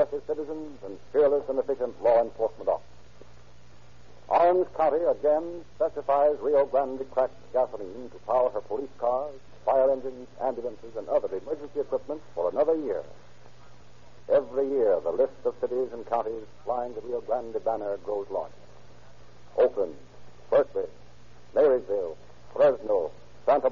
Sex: male